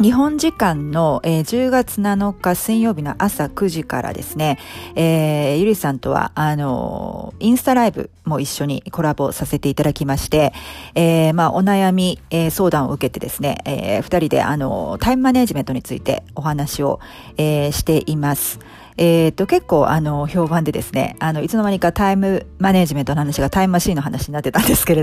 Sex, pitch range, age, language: female, 145-185 Hz, 40-59, Japanese